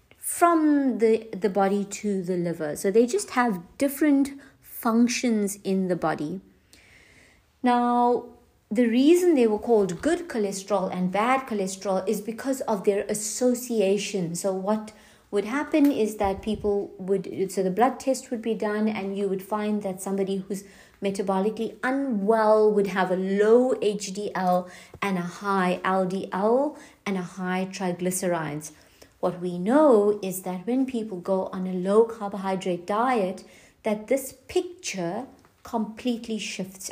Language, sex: English, female